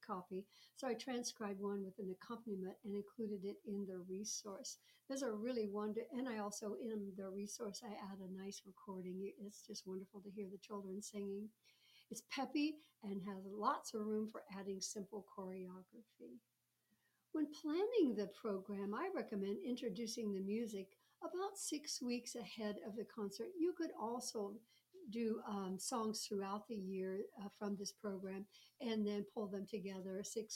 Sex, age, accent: female, 60-79, American